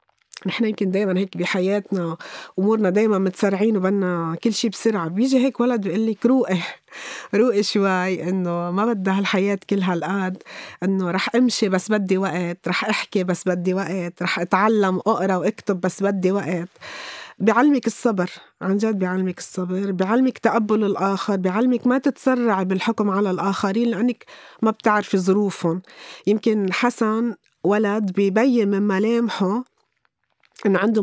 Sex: female